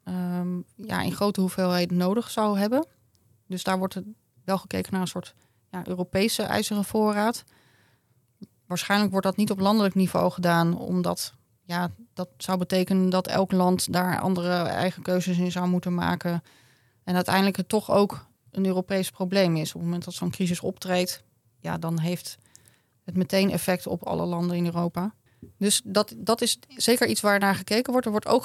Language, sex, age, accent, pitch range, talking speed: Dutch, female, 20-39, Dutch, 170-200 Hz, 175 wpm